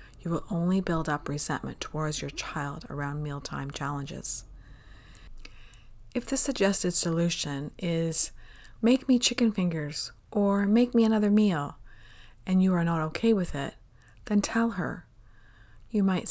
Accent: American